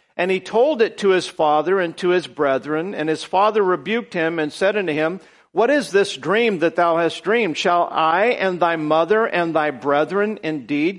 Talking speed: 200 wpm